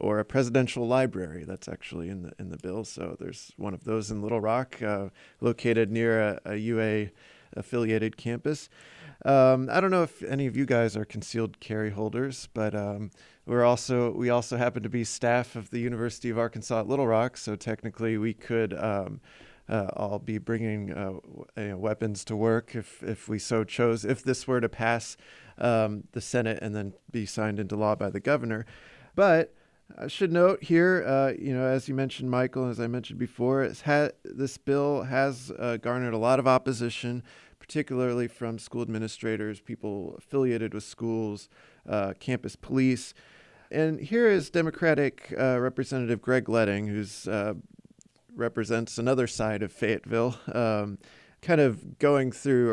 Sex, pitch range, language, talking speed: male, 110-130 Hz, English, 170 wpm